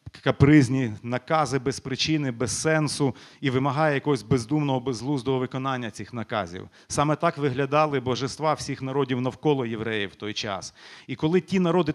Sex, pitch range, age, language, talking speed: male, 120-145 Hz, 40-59, Ukrainian, 145 wpm